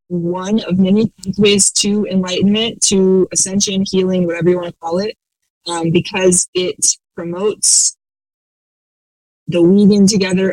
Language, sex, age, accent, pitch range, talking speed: English, female, 20-39, American, 165-195 Hz, 125 wpm